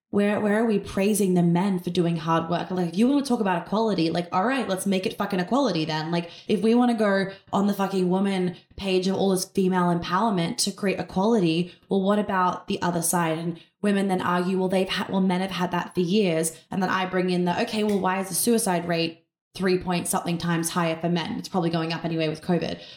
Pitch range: 170-195 Hz